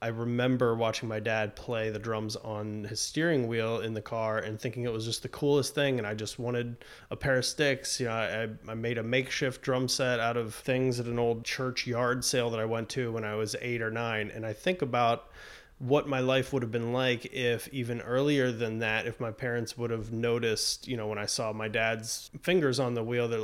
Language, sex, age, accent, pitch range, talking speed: English, male, 20-39, American, 115-135 Hz, 240 wpm